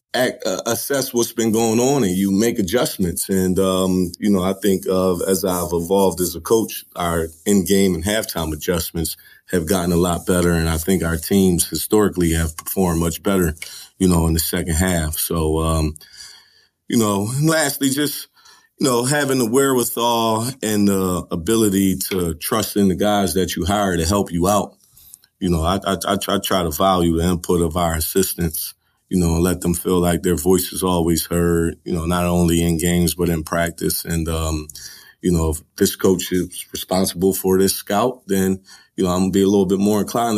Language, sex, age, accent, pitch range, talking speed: English, male, 30-49, American, 85-100 Hz, 195 wpm